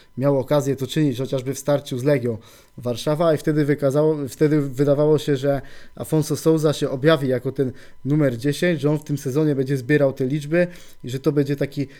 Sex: male